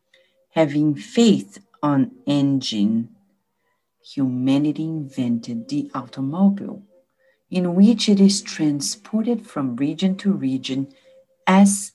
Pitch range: 135-225 Hz